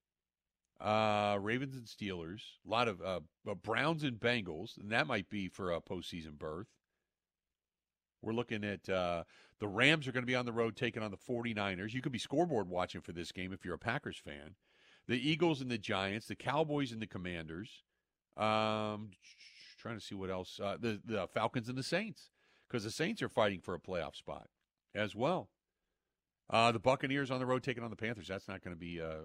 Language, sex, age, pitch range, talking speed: English, male, 50-69, 90-125 Hz, 205 wpm